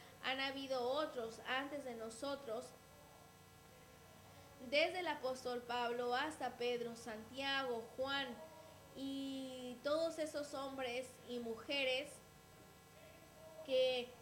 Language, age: English, 20-39